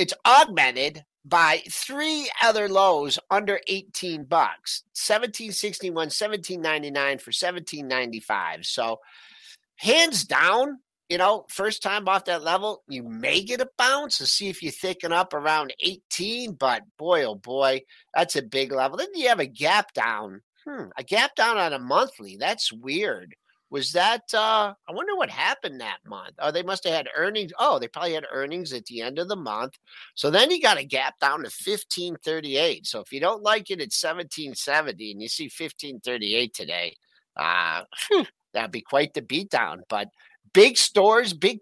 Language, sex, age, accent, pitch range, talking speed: English, male, 50-69, American, 145-230 Hz, 175 wpm